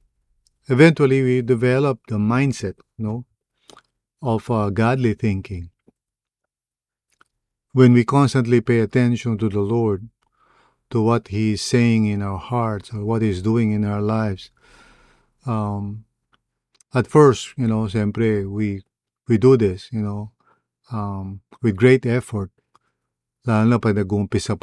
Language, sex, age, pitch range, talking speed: English, male, 50-69, 105-125 Hz, 130 wpm